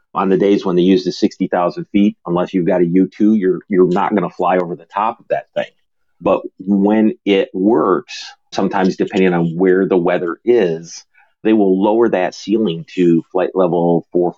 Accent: American